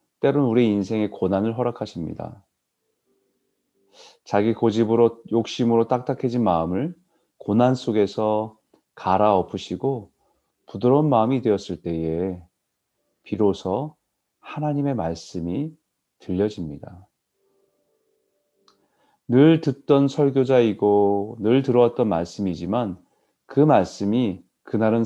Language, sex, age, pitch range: Korean, male, 40-59, 95-135 Hz